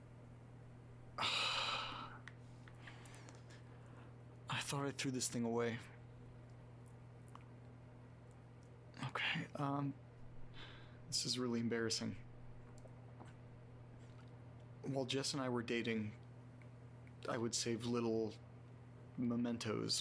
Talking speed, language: 70 wpm, English